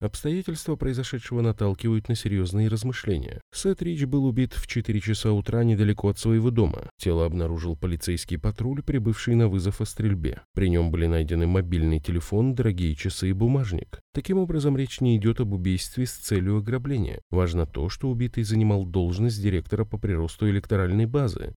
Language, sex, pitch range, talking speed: Russian, male, 90-120 Hz, 160 wpm